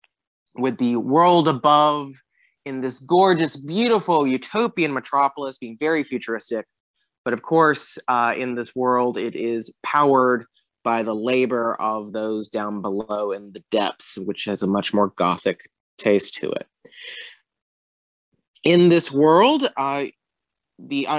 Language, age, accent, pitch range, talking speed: English, 20-39, American, 120-150 Hz, 135 wpm